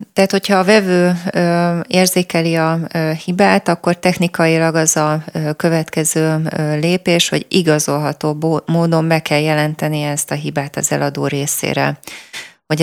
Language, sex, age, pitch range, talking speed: Hungarian, female, 30-49, 150-170 Hz, 140 wpm